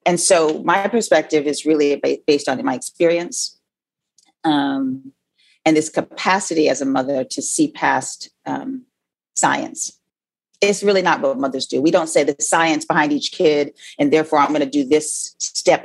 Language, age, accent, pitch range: English, 30-49, American, 140-185 Hz